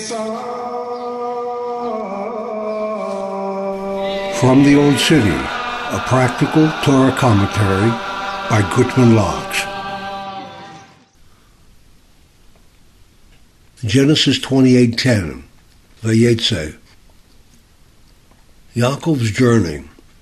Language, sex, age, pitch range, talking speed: English, male, 60-79, 115-155 Hz, 45 wpm